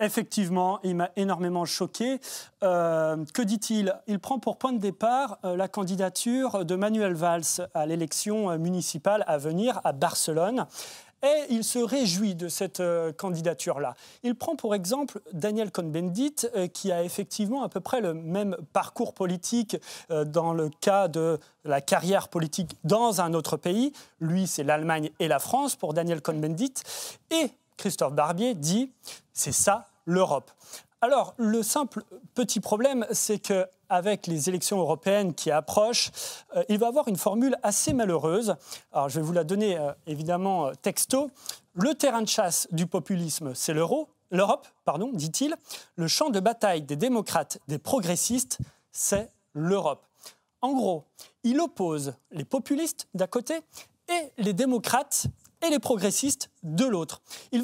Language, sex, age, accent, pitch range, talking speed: French, male, 30-49, French, 170-240 Hz, 155 wpm